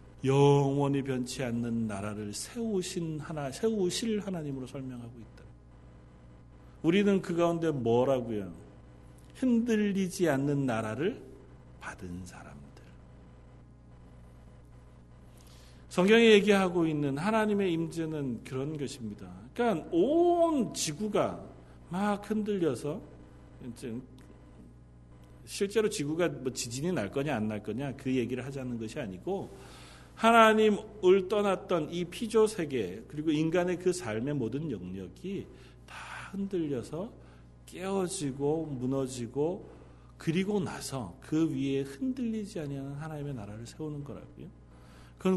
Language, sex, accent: Korean, male, native